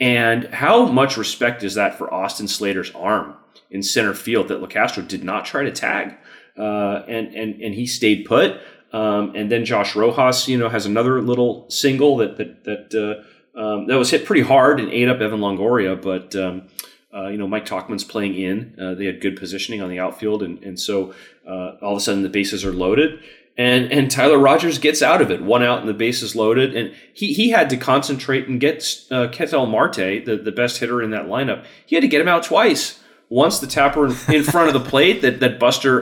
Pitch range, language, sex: 100-130 Hz, English, male